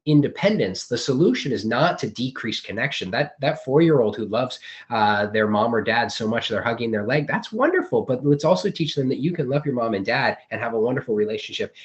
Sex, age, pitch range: male, 20-39, 105-155 Hz